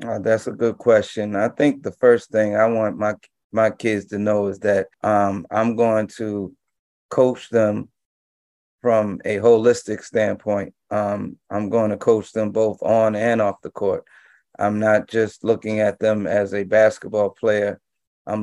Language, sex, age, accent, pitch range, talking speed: English, male, 30-49, American, 105-115 Hz, 170 wpm